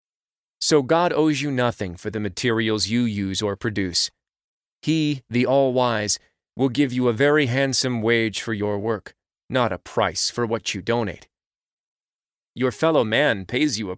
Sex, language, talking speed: male, English, 165 wpm